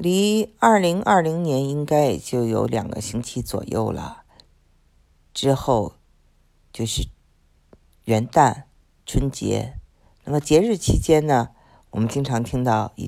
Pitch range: 95-135 Hz